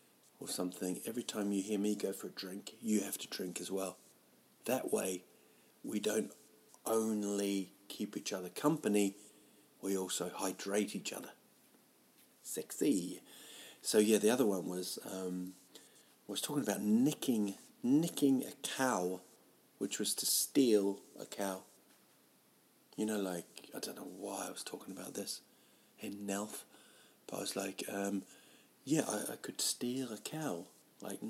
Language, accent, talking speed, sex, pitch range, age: English, British, 155 wpm, male, 95-130 Hz, 40-59